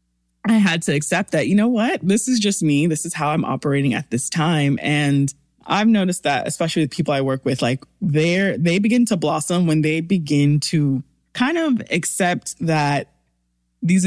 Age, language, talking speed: 20-39, English, 190 wpm